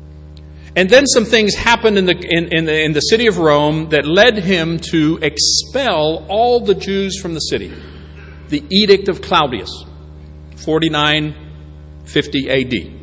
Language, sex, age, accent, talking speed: English, male, 50-69, American, 145 wpm